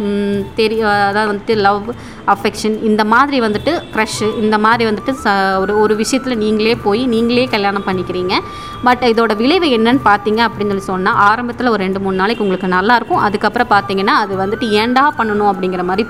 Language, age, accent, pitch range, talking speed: Tamil, 20-39, native, 205-250 Hz, 165 wpm